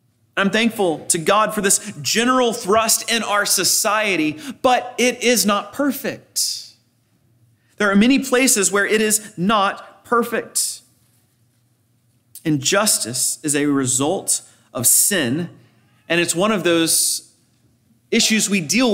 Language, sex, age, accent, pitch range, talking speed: English, male, 30-49, American, 165-225 Hz, 125 wpm